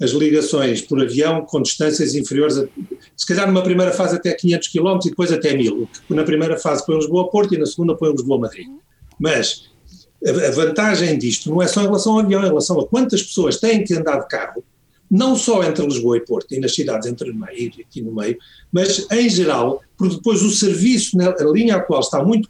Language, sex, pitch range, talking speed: Portuguese, male, 155-195 Hz, 215 wpm